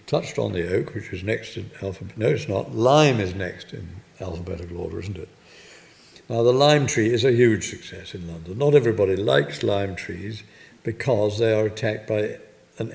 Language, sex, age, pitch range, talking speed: English, male, 60-79, 95-120 Hz, 190 wpm